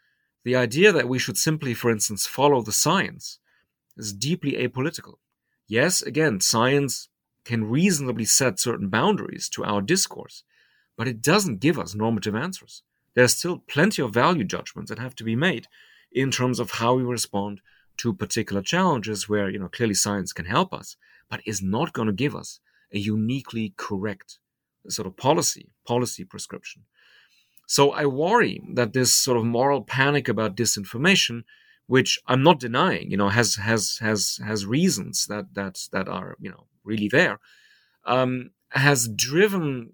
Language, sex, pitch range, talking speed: English, male, 110-140 Hz, 165 wpm